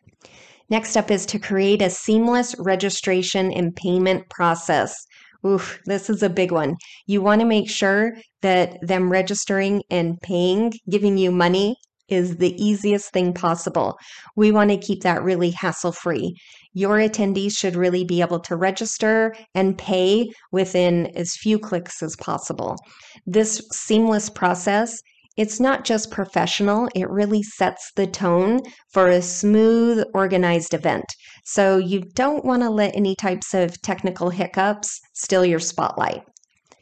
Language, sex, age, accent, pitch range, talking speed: English, female, 30-49, American, 180-210 Hz, 145 wpm